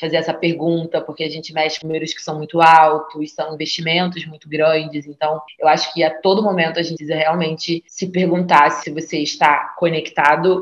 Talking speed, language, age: 185 wpm, Portuguese, 20-39